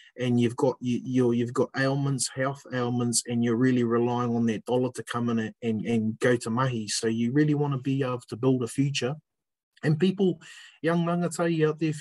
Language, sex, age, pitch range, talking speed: English, male, 20-39, 125-155 Hz, 220 wpm